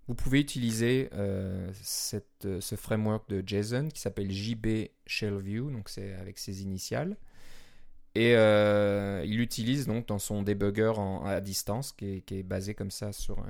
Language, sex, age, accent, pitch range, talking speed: French, male, 20-39, French, 100-115 Hz, 170 wpm